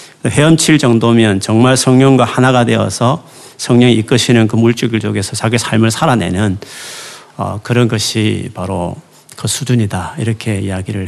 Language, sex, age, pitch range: Korean, male, 40-59, 110-145 Hz